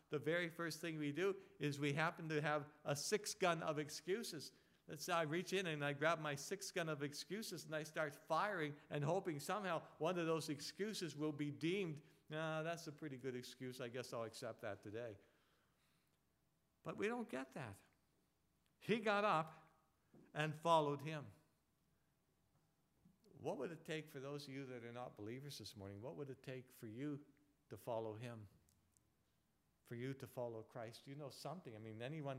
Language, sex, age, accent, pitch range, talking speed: English, male, 60-79, American, 135-175 Hz, 185 wpm